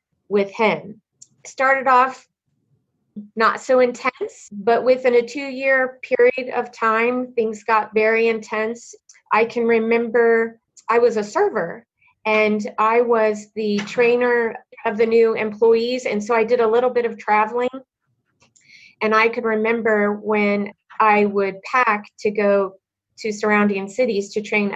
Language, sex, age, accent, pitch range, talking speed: English, female, 30-49, American, 205-230 Hz, 140 wpm